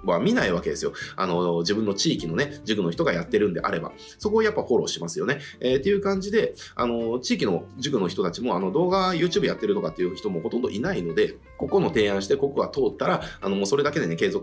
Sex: male